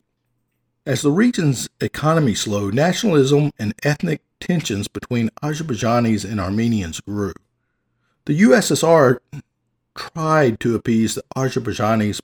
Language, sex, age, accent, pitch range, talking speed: English, male, 50-69, American, 105-145 Hz, 105 wpm